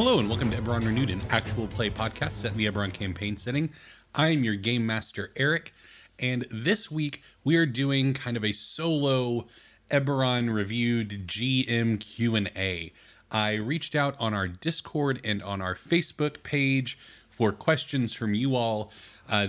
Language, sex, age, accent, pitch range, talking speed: English, male, 30-49, American, 100-130 Hz, 165 wpm